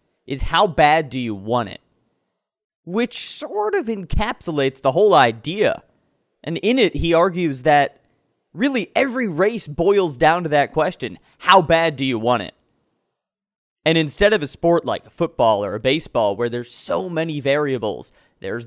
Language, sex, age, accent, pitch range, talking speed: English, male, 20-39, American, 130-185 Hz, 160 wpm